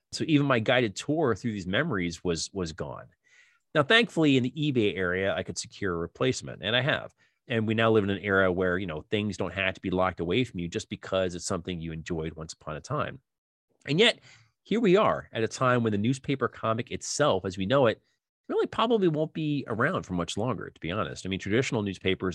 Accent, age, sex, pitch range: American, 30-49, male, 85-115 Hz